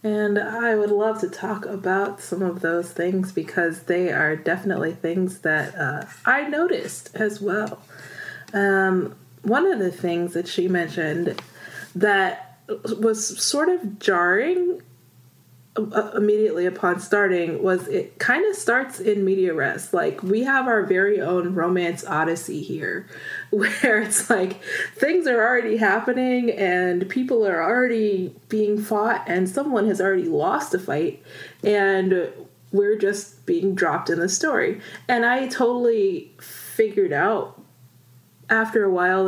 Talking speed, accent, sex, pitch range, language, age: 140 wpm, American, female, 175-220 Hz, English, 20-39